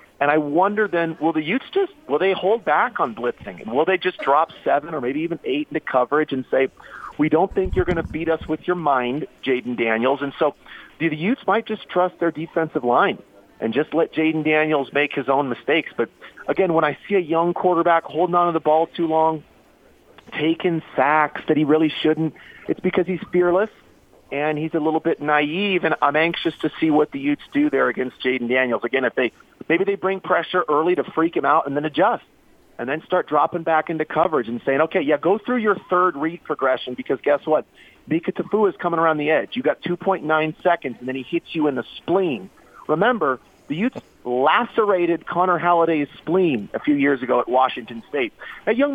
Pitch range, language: 150-185 Hz, English